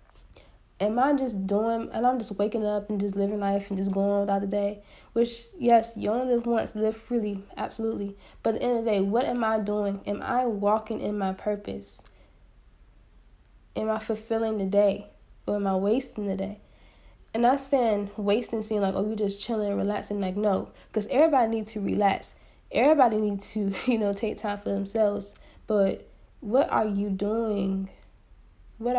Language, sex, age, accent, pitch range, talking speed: English, female, 10-29, American, 195-220 Hz, 190 wpm